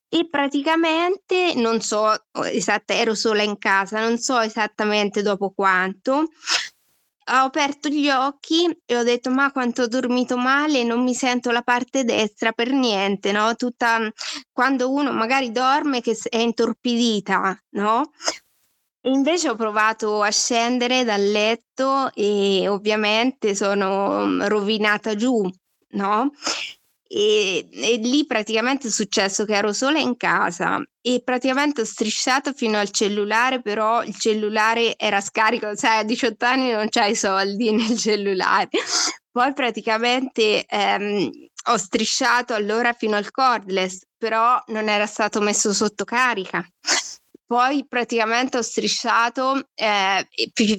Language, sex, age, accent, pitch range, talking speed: Italian, female, 20-39, native, 215-260 Hz, 130 wpm